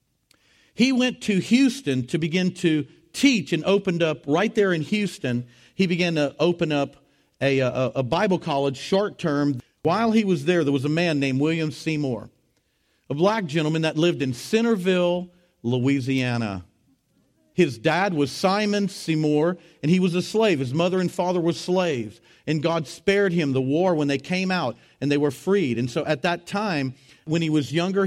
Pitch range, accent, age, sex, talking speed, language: 150-185 Hz, American, 50-69, male, 175 wpm, English